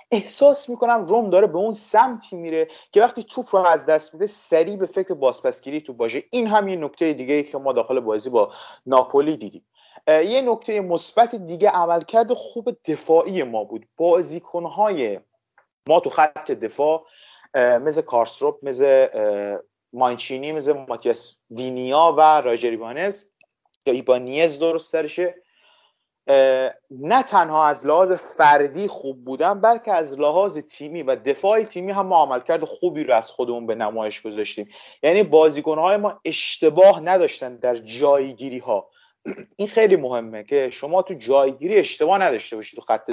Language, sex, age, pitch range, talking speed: Persian, male, 30-49, 135-215 Hz, 150 wpm